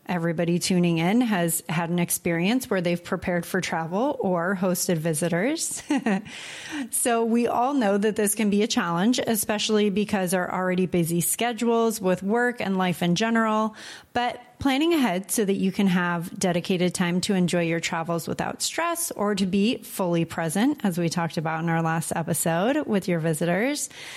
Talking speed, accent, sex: 170 wpm, American, female